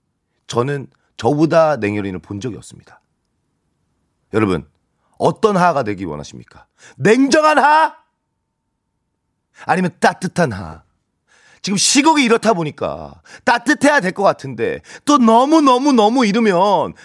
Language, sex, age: Korean, male, 40-59